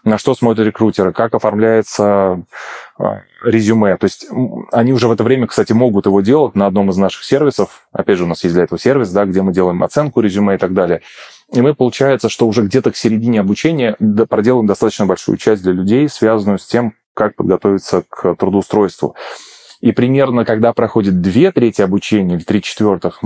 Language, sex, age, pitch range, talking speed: Russian, male, 20-39, 100-120 Hz, 185 wpm